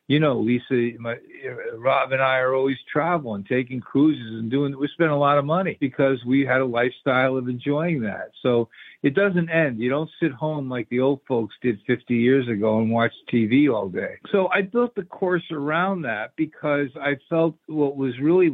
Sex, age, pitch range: male, 50-69, 125-150 Hz